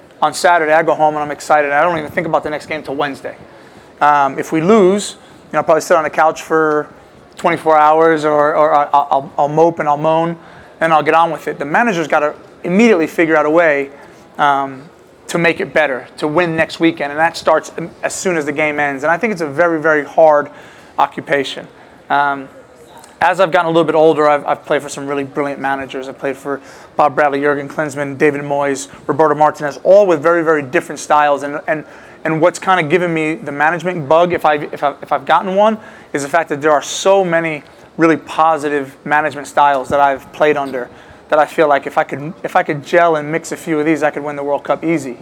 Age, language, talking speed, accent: 30-49, English, 230 wpm, American